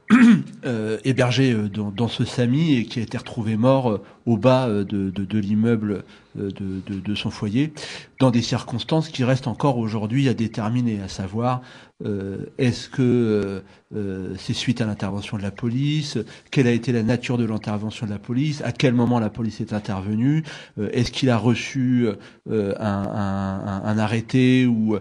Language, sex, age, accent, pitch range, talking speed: French, male, 40-59, French, 105-130 Hz, 180 wpm